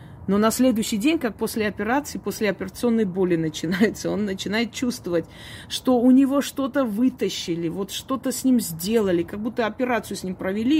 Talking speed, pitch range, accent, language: 165 wpm, 180-230 Hz, native, Russian